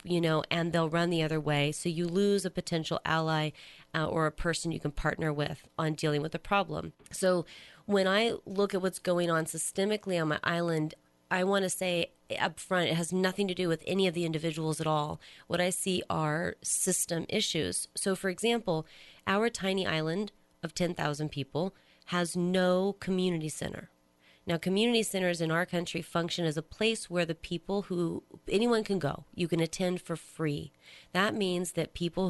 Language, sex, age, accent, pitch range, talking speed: English, female, 30-49, American, 155-185 Hz, 190 wpm